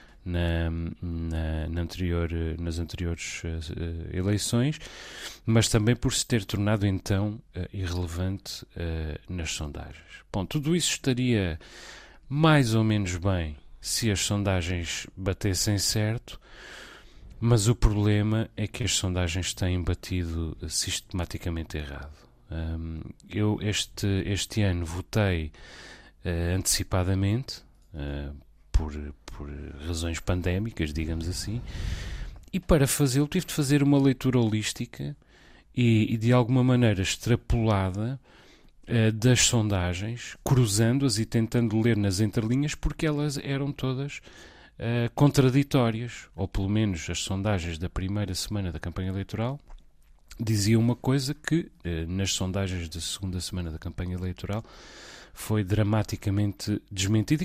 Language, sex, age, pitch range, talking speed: Portuguese, male, 30-49, 85-115 Hz, 120 wpm